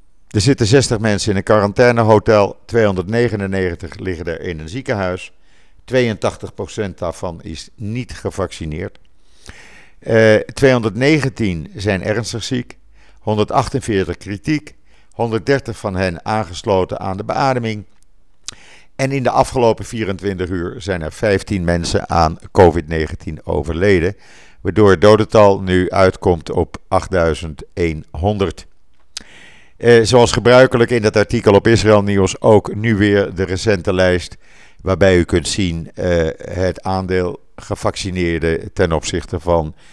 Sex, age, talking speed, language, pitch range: male, 50-69, 115 wpm, Dutch, 85-110 Hz